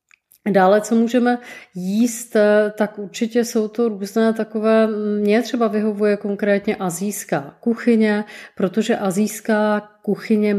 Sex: female